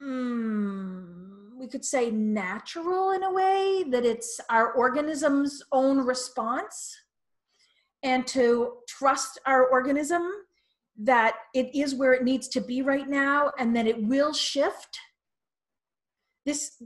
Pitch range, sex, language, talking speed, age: 230-275 Hz, female, English, 125 wpm, 40-59